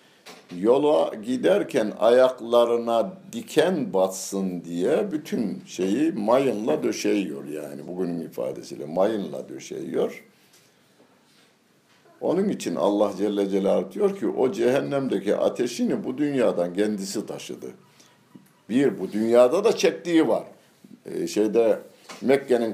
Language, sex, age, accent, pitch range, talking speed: Turkish, male, 60-79, native, 90-110 Hz, 100 wpm